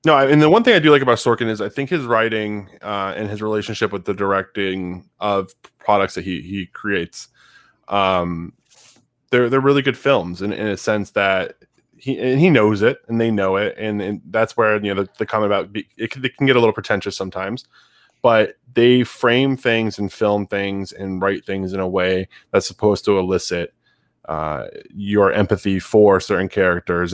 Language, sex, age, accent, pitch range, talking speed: English, male, 20-39, American, 95-110 Hz, 200 wpm